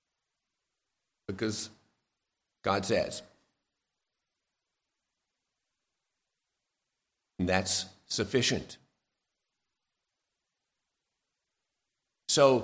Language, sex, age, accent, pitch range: English, male, 50-69, American, 125-150 Hz